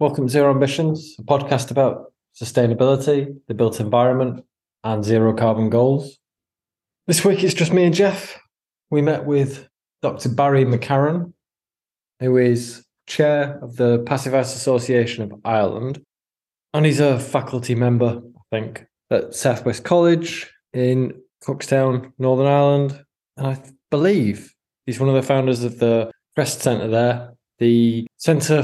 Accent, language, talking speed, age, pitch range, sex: British, English, 140 wpm, 20-39, 115-140 Hz, male